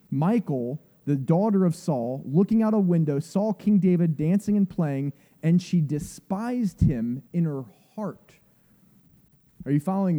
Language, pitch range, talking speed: English, 155-195 Hz, 145 wpm